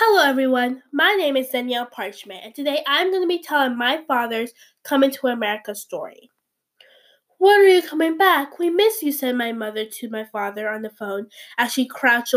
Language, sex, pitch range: English, female, 225-315 Hz